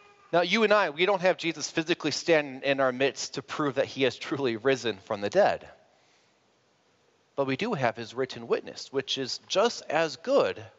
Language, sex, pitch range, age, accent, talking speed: English, male, 135-185 Hz, 30-49, American, 195 wpm